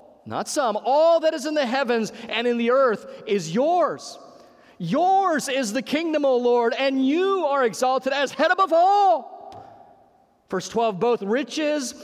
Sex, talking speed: male, 160 wpm